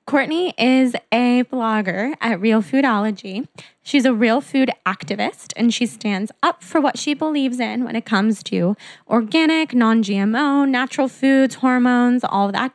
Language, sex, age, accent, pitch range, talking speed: English, female, 10-29, American, 215-270 Hz, 150 wpm